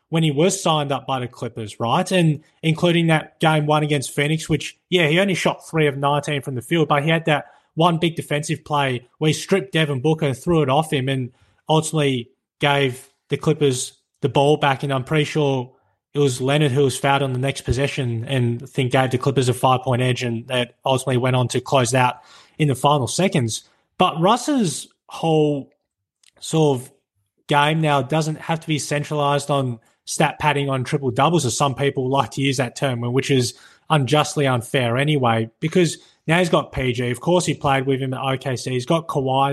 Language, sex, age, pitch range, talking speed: English, male, 20-39, 130-155 Hz, 200 wpm